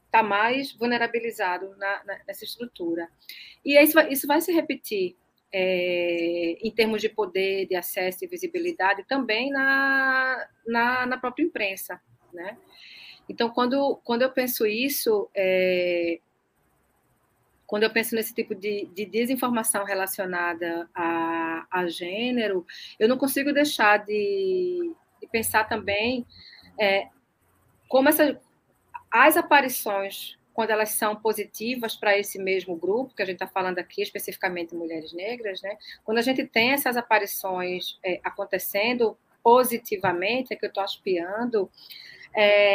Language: Portuguese